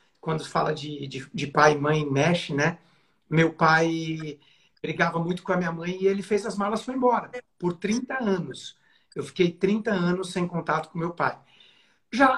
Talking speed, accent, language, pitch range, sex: 185 wpm, Brazilian, Portuguese, 160-195 Hz, male